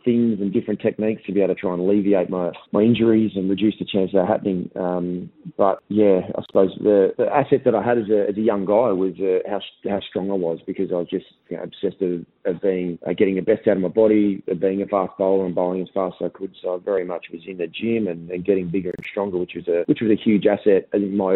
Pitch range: 90-100 Hz